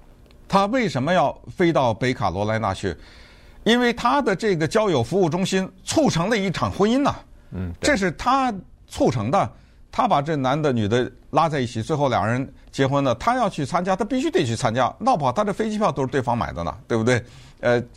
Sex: male